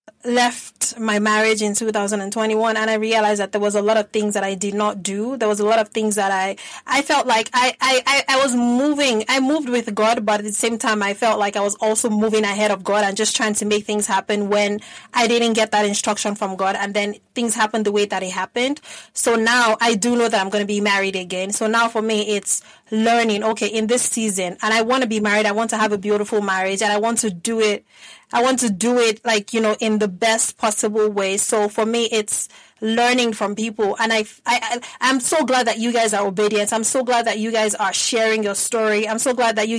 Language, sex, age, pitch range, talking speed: English, female, 20-39, 210-240 Hz, 250 wpm